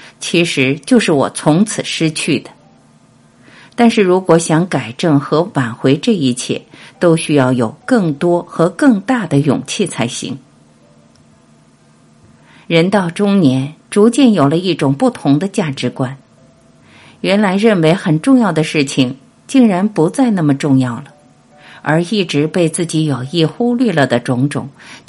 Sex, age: female, 50-69